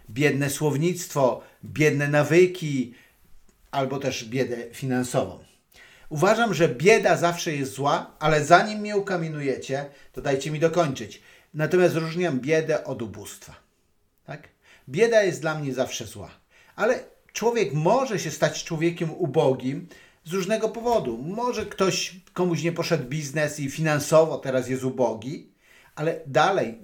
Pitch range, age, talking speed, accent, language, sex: 130-165 Hz, 50-69, 125 wpm, native, Polish, male